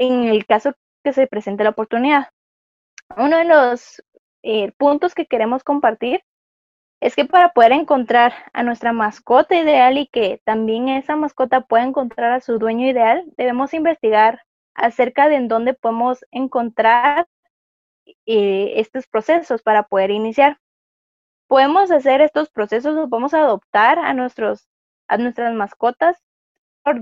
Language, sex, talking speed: Spanish, female, 140 wpm